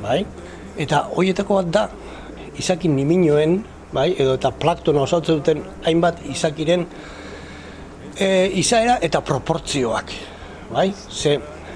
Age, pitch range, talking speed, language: 60-79, 135-165 Hz, 100 wpm, Spanish